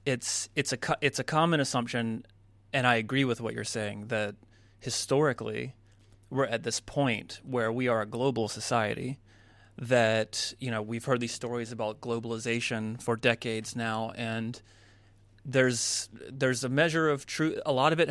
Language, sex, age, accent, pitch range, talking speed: English, male, 30-49, American, 110-125 Hz, 160 wpm